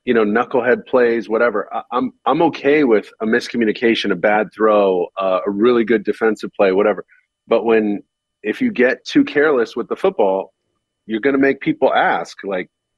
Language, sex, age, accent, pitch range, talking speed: English, male, 40-59, American, 105-145 Hz, 180 wpm